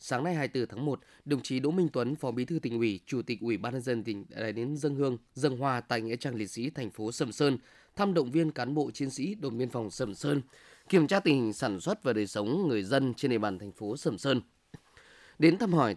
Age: 20-39